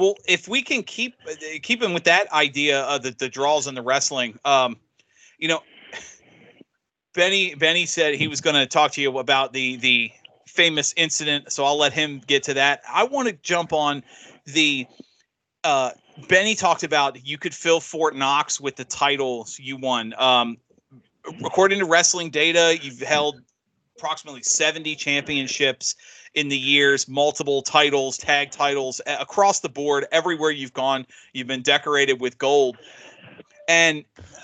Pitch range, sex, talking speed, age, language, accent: 135-170 Hz, male, 160 wpm, 30-49, English, American